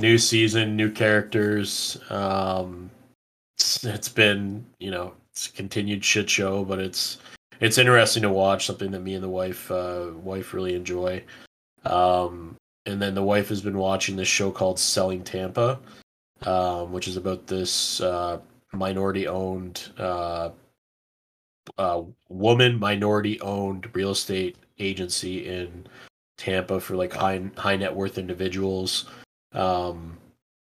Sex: male